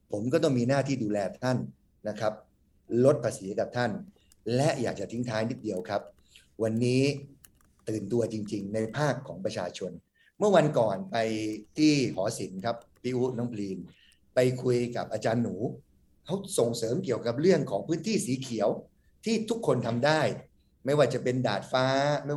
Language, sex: Thai, male